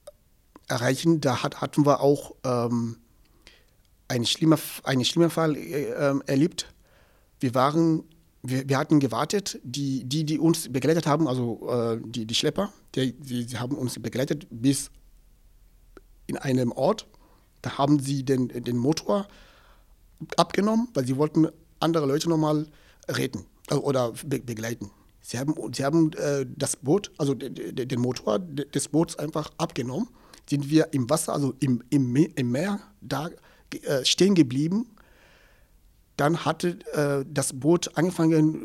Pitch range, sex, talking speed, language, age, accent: 125-160 Hz, male, 145 wpm, German, 60-79, German